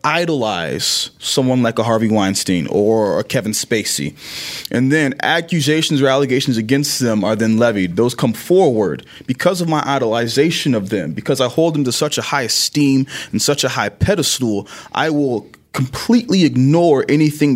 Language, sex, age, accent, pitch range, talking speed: English, male, 20-39, American, 115-145 Hz, 165 wpm